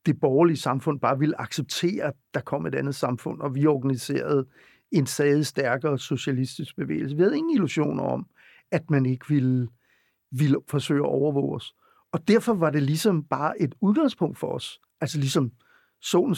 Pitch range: 145-200 Hz